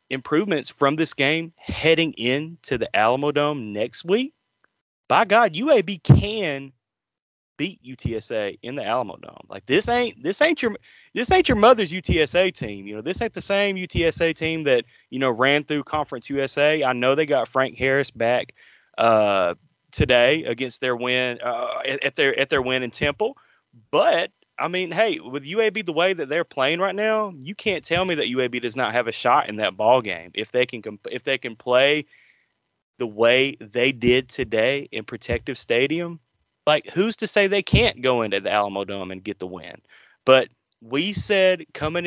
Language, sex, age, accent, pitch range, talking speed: English, male, 30-49, American, 120-180 Hz, 185 wpm